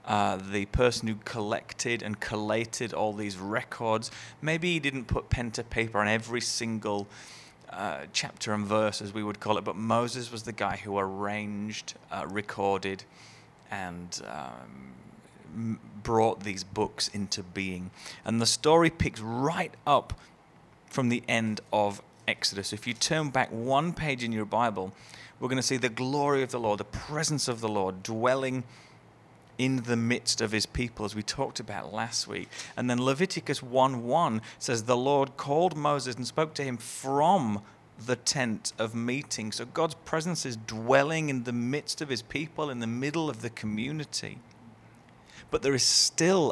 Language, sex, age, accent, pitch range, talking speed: English, male, 30-49, British, 105-135 Hz, 170 wpm